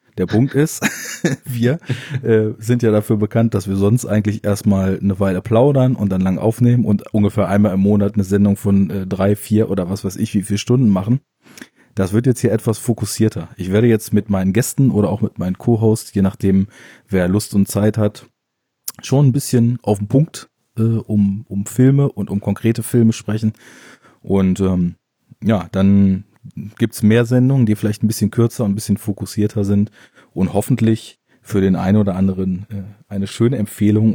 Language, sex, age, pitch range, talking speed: German, male, 30-49, 100-115 Hz, 190 wpm